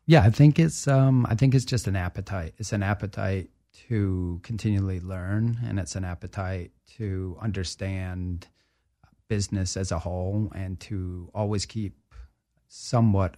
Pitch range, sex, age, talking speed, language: 95-105 Hz, male, 30-49, 145 wpm, English